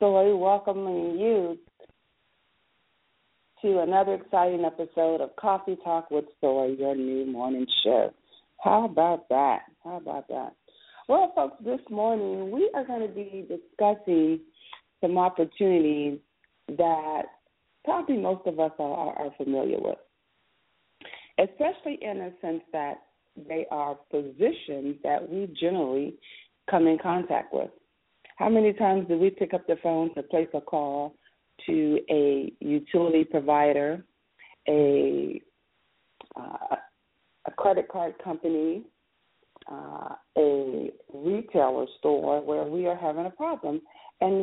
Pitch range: 150-200 Hz